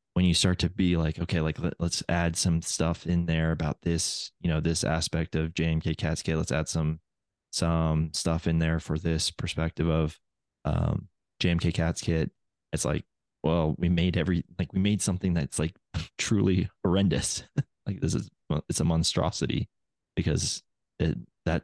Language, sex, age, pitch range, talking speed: English, male, 20-39, 80-90 Hz, 170 wpm